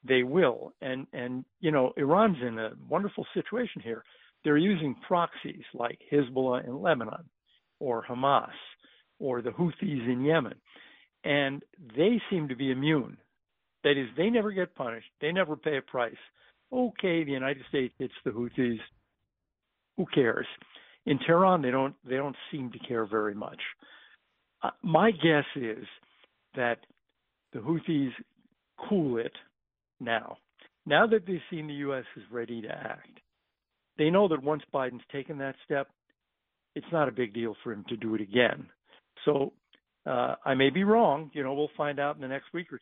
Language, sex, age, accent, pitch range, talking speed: English, male, 60-79, American, 125-160 Hz, 165 wpm